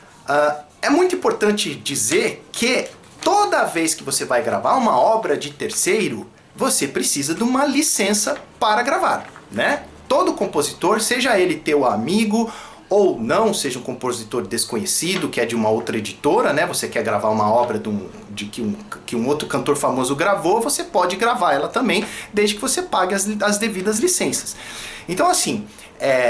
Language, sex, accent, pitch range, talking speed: Portuguese, male, Brazilian, 140-225 Hz, 170 wpm